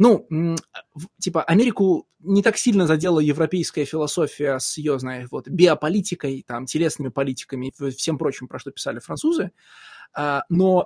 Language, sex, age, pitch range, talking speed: Russian, male, 20-39, 145-195 Hz, 135 wpm